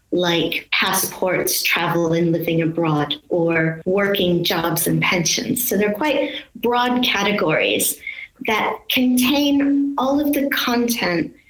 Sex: female